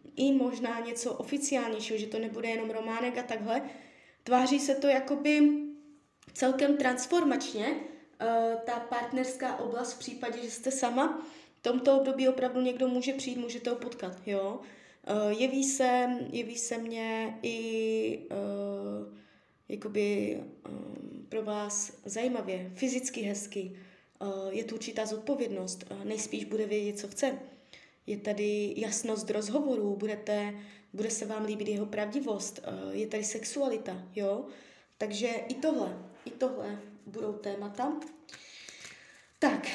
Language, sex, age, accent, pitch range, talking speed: Czech, female, 20-39, native, 215-280 Hz, 120 wpm